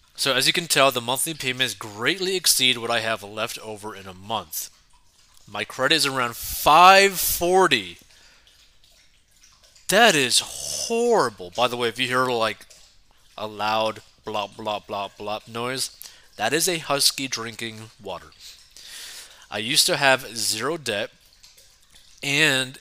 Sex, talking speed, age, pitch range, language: male, 140 wpm, 30-49, 110-140 Hz, English